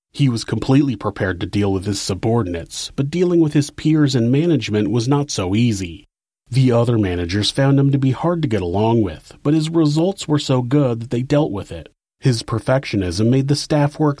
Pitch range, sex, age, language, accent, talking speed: 105-150 Hz, male, 30-49, English, American, 205 wpm